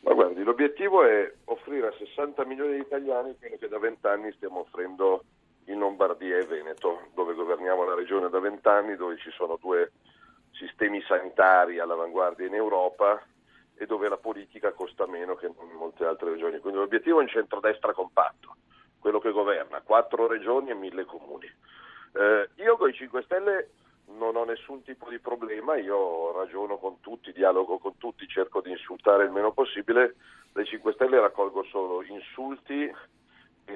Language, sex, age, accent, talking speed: Italian, male, 50-69, native, 160 wpm